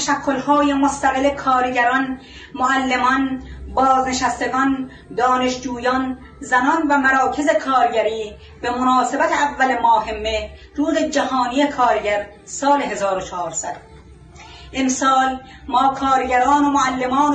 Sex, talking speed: female, 85 wpm